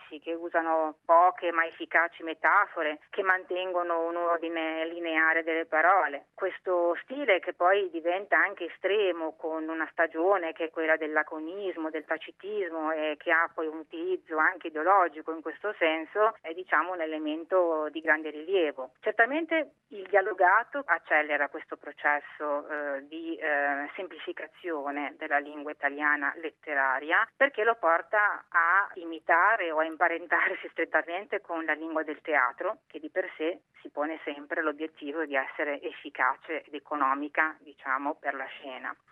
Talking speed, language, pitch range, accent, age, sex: 145 wpm, Italian, 155-190 Hz, native, 30-49, female